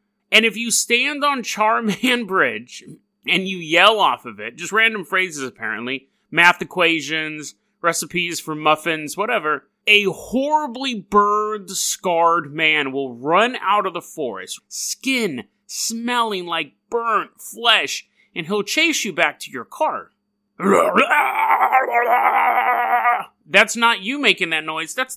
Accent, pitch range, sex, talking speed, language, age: American, 150-220 Hz, male, 130 wpm, English, 30-49